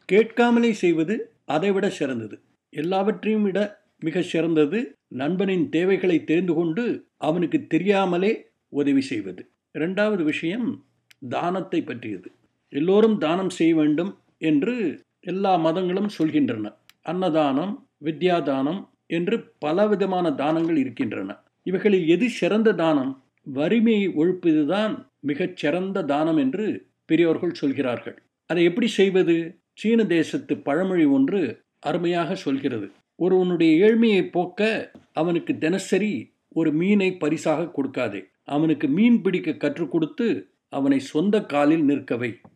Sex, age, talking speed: male, 50-69, 105 wpm